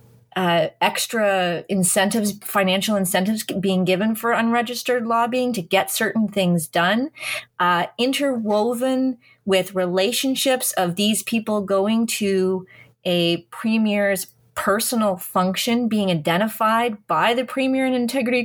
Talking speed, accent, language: 115 wpm, American, English